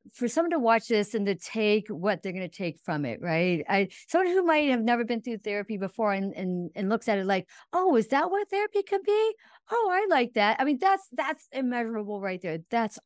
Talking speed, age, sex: 240 wpm, 40-59, female